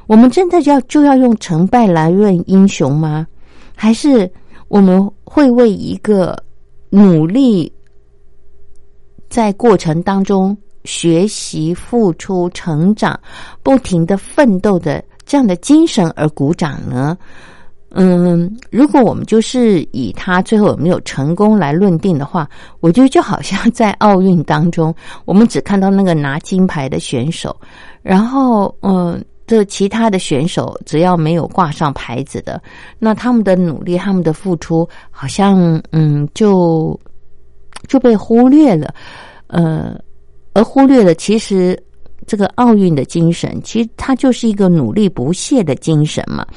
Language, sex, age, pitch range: Chinese, female, 50-69, 160-220 Hz